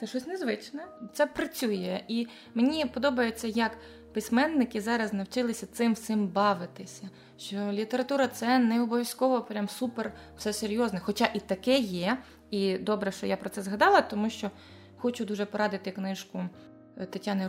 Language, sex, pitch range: Ukrainian, female, 200-255 Hz